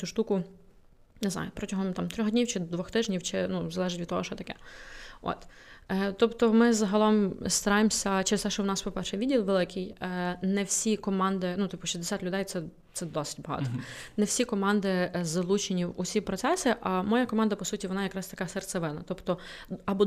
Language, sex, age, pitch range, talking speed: Ukrainian, female, 20-39, 180-215 Hz, 180 wpm